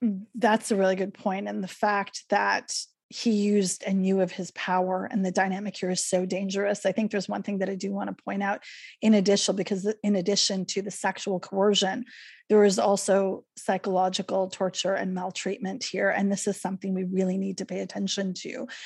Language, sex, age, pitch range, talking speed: English, female, 30-49, 190-205 Hz, 200 wpm